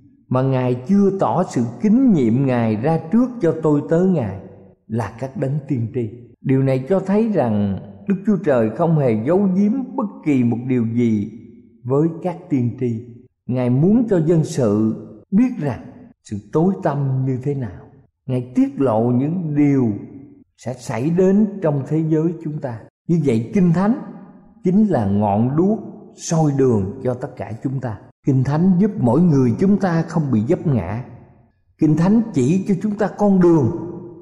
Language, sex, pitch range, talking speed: Vietnamese, male, 120-180 Hz, 175 wpm